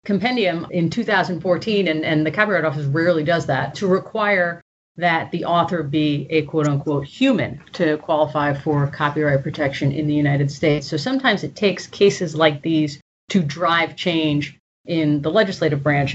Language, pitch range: English, 155-185 Hz